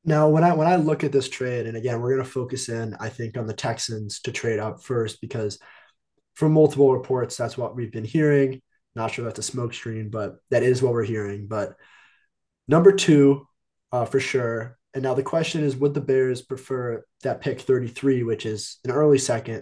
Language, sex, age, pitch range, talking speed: English, male, 20-39, 115-140 Hz, 210 wpm